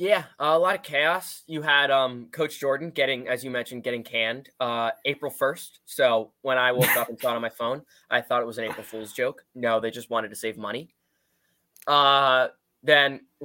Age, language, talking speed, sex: 10-29, English, 215 wpm, male